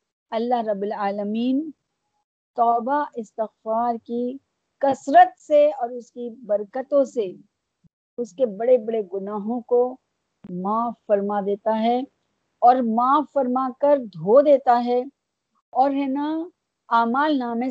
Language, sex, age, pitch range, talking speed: Urdu, female, 50-69, 215-275 Hz, 120 wpm